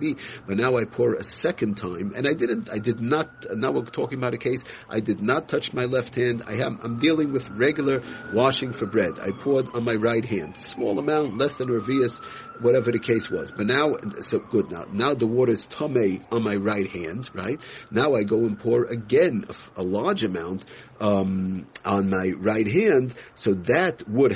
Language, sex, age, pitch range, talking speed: English, male, 50-69, 105-125 Hz, 200 wpm